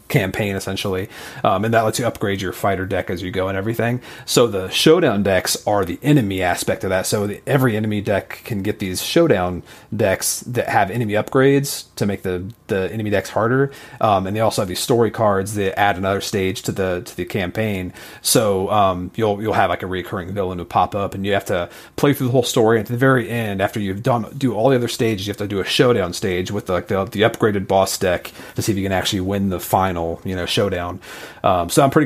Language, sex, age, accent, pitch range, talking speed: English, male, 30-49, American, 95-120 Hz, 240 wpm